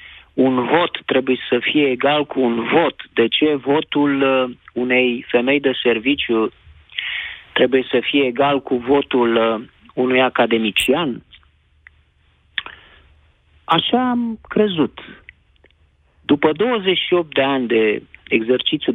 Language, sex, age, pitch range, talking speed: Romanian, male, 40-59, 105-150 Hz, 105 wpm